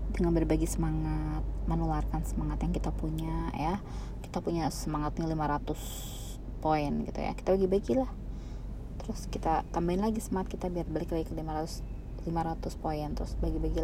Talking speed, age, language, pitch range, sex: 150 wpm, 20-39, Indonesian, 135-190 Hz, female